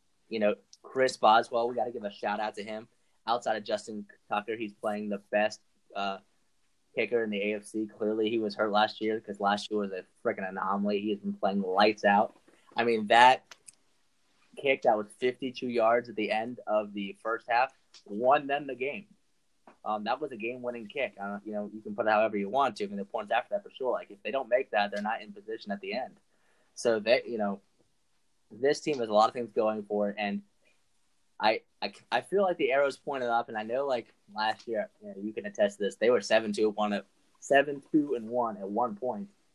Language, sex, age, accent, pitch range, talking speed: English, male, 20-39, American, 100-120 Hz, 230 wpm